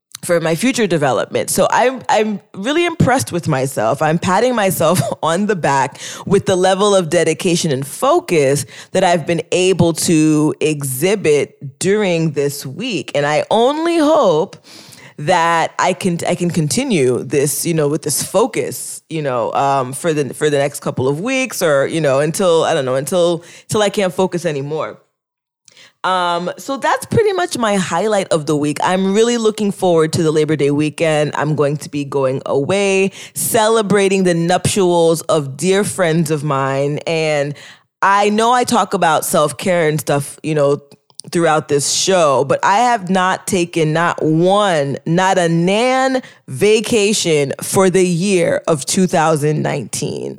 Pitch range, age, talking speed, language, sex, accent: 150-200 Hz, 20-39, 160 wpm, English, female, American